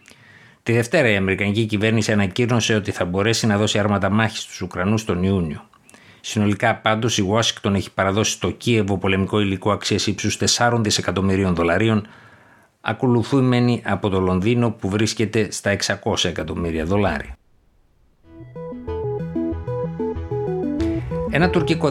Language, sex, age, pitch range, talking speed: Greek, male, 60-79, 95-115 Hz, 120 wpm